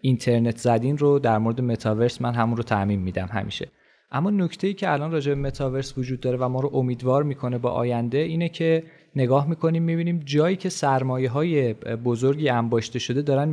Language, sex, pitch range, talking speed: Persian, male, 120-150 Hz, 185 wpm